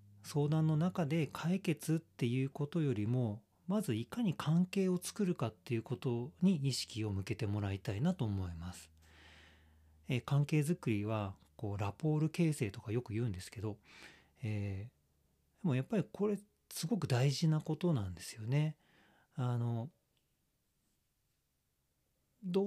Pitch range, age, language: 105-150 Hz, 40-59, Japanese